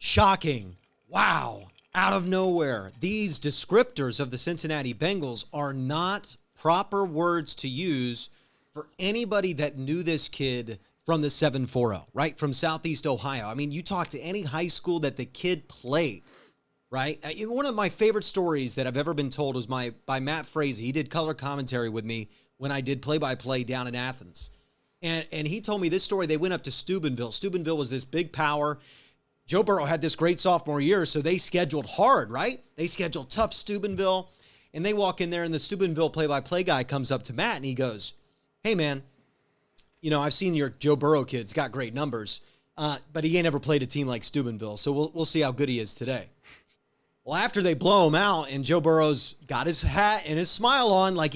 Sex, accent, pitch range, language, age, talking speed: male, American, 135-175 Hz, English, 30-49, 200 wpm